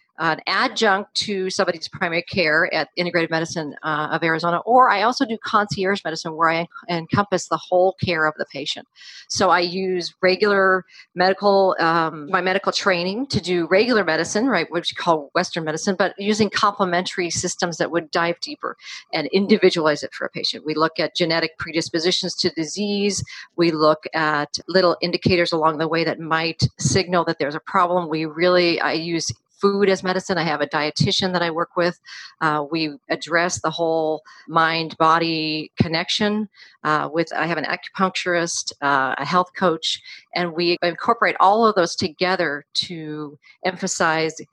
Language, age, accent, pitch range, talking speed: English, 40-59, American, 160-190 Hz, 165 wpm